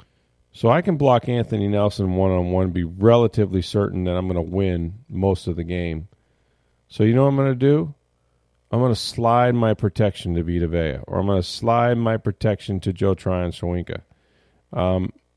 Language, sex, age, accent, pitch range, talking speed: English, male, 40-59, American, 85-110 Hz, 180 wpm